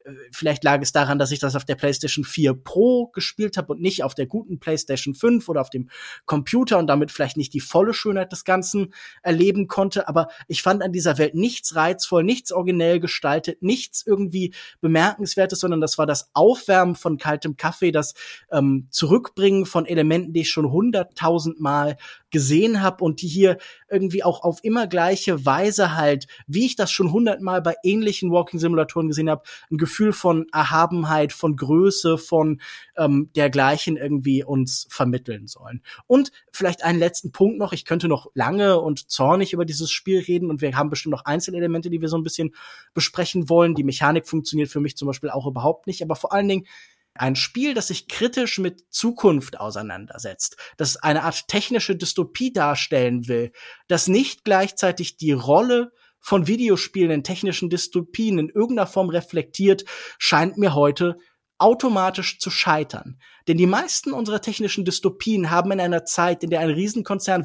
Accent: German